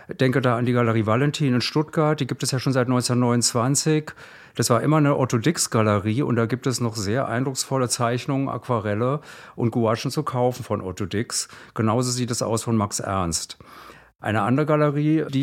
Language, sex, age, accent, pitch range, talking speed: German, male, 50-69, German, 110-130 Hz, 180 wpm